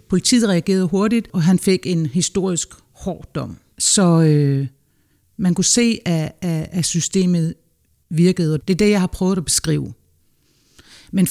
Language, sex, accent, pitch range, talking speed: Danish, female, native, 165-195 Hz, 145 wpm